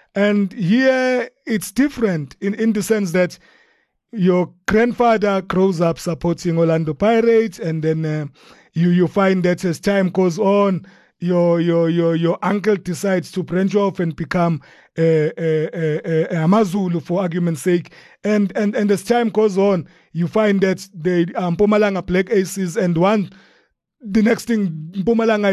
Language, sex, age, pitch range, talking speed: English, male, 30-49, 175-220 Hz, 160 wpm